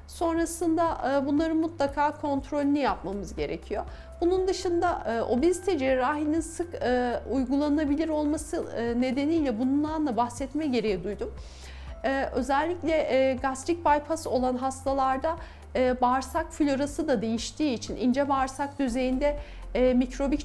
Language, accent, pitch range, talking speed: Turkish, native, 255-305 Hz, 95 wpm